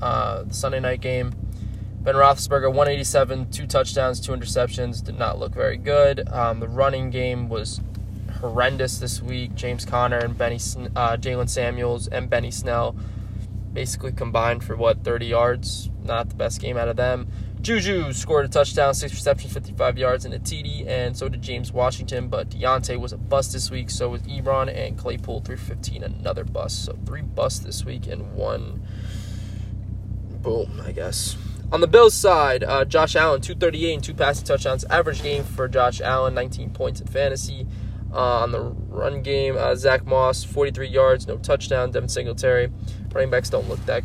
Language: English